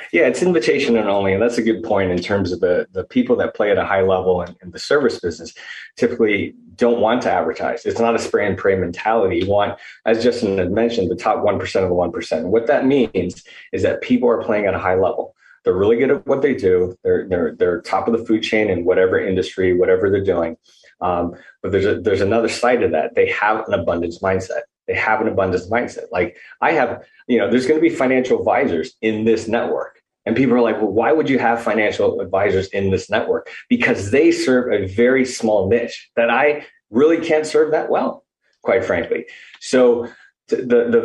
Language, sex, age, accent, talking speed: English, male, 20-39, American, 220 wpm